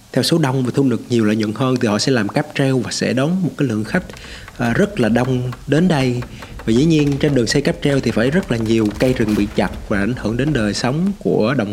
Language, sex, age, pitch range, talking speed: Vietnamese, male, 20-39, 110-145 Hz, 275 wpm